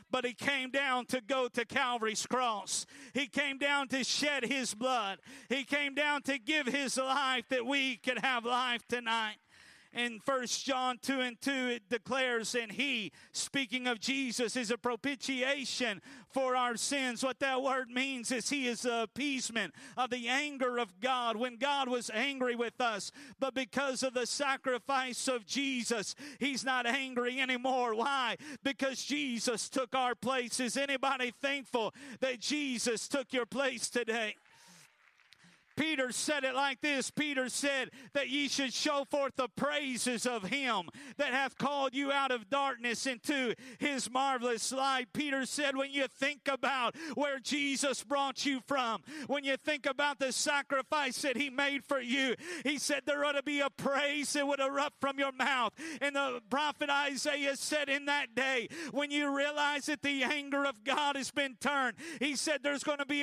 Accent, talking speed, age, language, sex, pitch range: American, 175 wpm, 40-59, English, male, 250-280 Hz